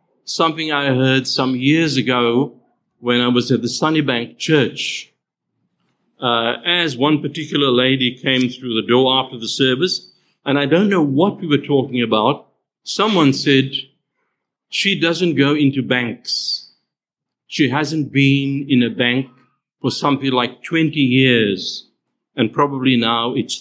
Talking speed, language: 140 wpm, English